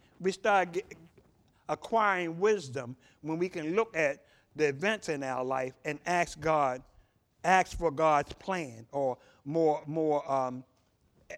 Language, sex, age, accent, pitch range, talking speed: English, male, 60-79, American, 145-195 Hz, 135 wpm